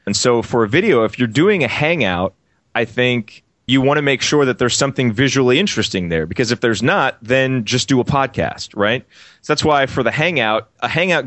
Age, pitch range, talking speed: 30-49, 105-130 Hz, 220 wpm